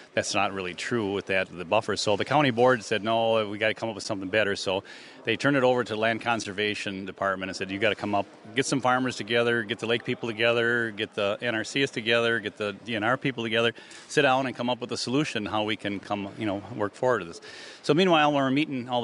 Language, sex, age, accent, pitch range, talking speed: English, male, 40-59, American, 100-125 Hz, 250 wpm